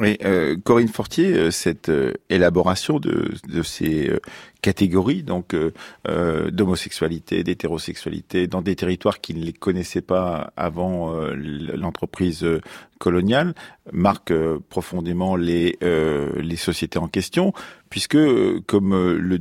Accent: French